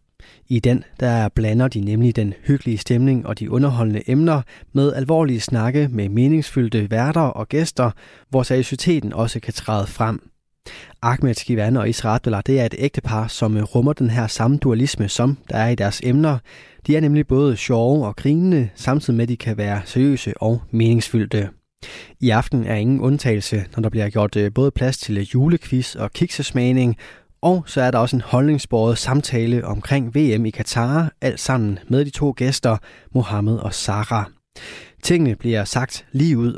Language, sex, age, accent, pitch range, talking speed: Danish, male, 20-39, native, 110-135 Hz, 170 wpm